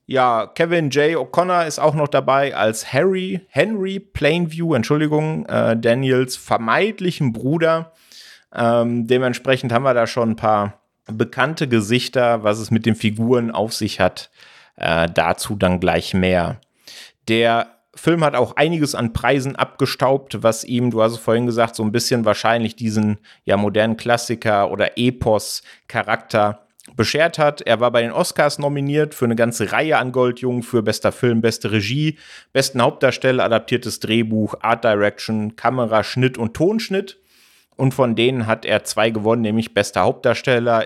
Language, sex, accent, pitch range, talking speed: German, male, German, 110-135 Hz, 150 wpm